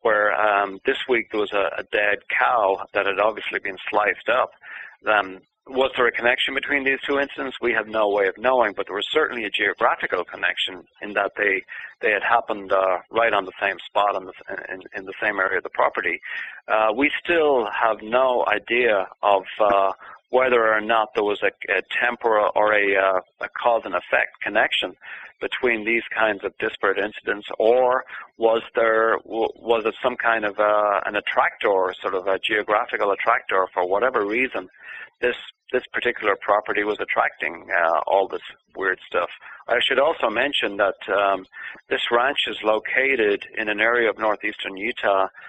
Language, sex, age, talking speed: English, male, 40-59, 180 wpm